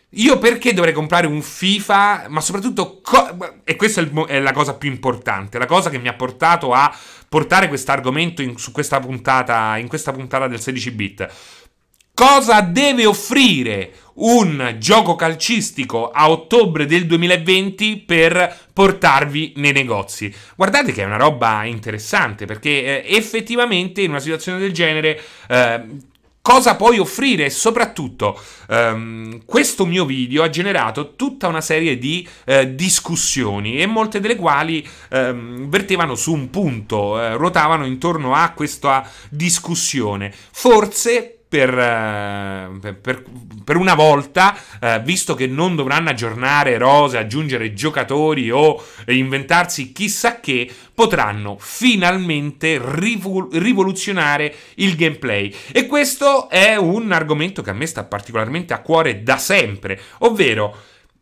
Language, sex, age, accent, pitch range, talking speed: Italian, male, 30-49, native, 125-190 Hz, 125 wpm